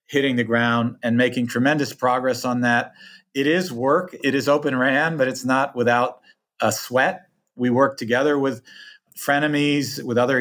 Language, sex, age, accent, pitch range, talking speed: English, male, 40-59, American, 120-140 Hz, 165 wpm